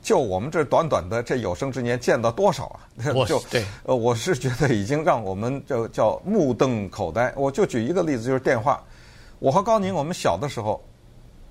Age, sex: 50-69, male